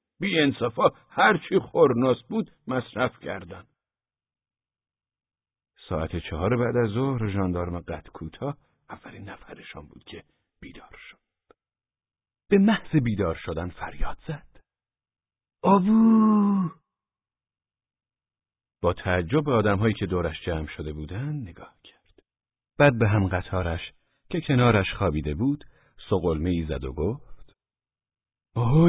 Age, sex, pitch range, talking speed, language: 50-69, male, 90-135 Hz, 110 wpm, Persian